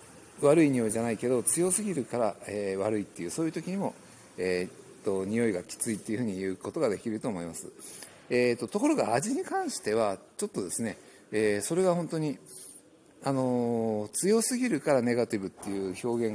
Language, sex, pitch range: Japanese, male, 105-165 Hz